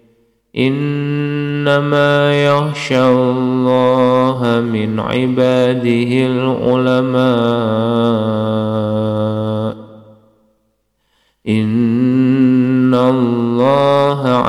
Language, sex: Indonesian, male